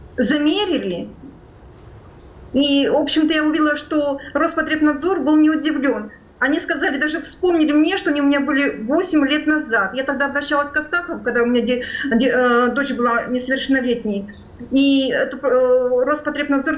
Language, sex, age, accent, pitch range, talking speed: Russian, female, 30-49, native, 250-320 Hz, 145 wpm